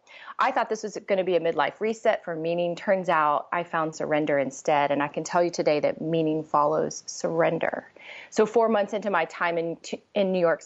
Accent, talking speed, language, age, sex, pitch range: American, 215 wpm, English, 30-49, female, 160-195 Hz